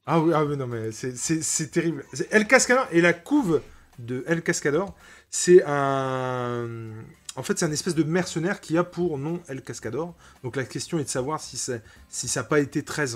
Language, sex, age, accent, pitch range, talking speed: French, male, 20-39, French, 130-175 Hz, 195 wpm